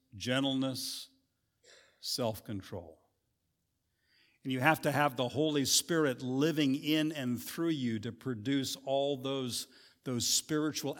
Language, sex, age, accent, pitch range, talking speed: English, male, 50-69, American, 115-155 Hz, 115 wpm